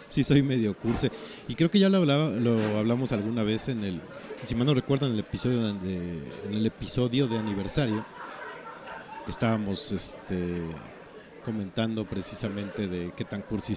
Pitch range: 95-125 Hz